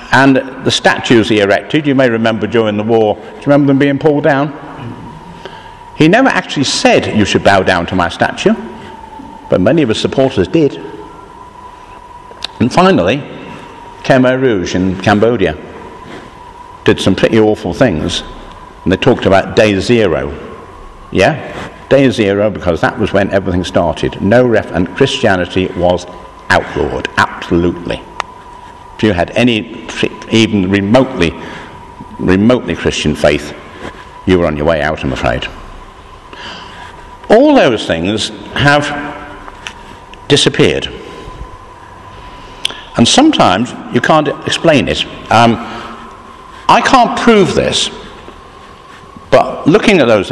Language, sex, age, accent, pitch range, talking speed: English, male, 60-79, British, 95-150 Hz, 125 wpm